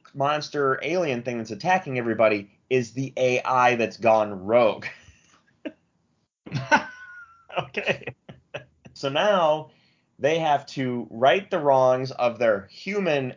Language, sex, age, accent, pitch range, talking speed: English, male, 30-49, American, 95-140 Hz, 110 wpm